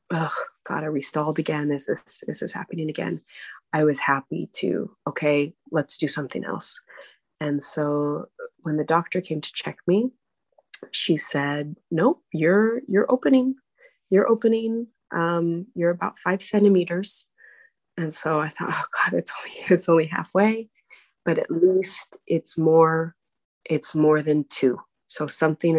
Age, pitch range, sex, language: 20-39, 150-195 Hz, female, English